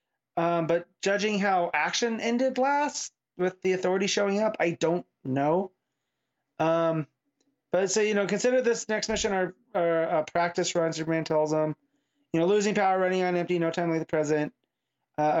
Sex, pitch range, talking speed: male, 150-190 Hz, 170 wpm